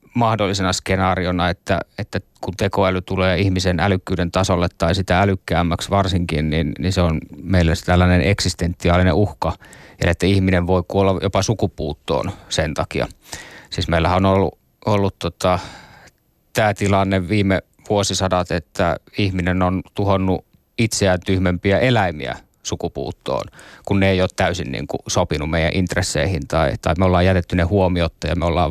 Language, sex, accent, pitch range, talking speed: Finnish, male, native, 85-100 Hz, 140 wpm